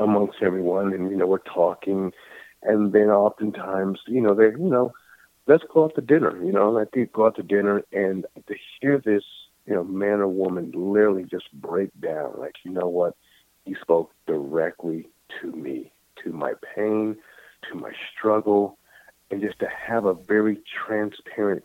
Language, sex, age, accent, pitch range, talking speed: English, male, 50-69, American, 95-115 Hz, 170 wpm